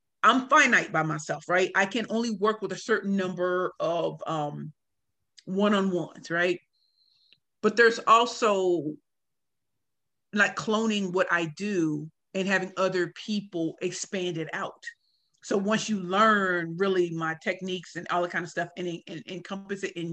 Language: English